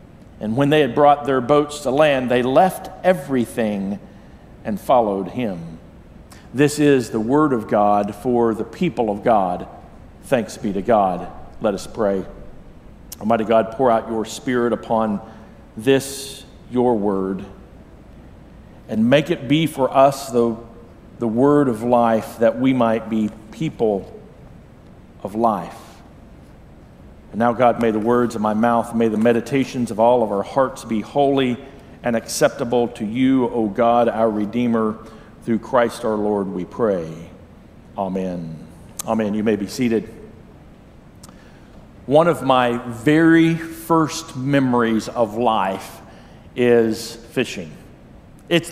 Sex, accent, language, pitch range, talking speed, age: male, American, English, 110-145 Hz, 135 wpm, 50-69